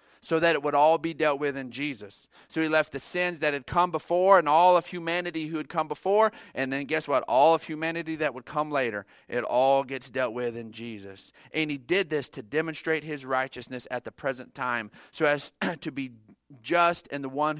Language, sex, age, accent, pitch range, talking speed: English, male, 40-59, American, 110-160 Hz, 220 wpm